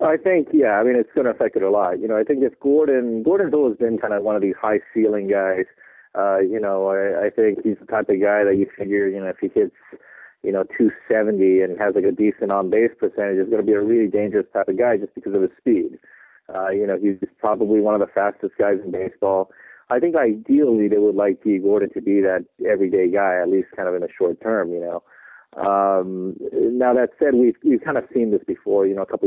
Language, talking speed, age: English, 250 wpm, 30-49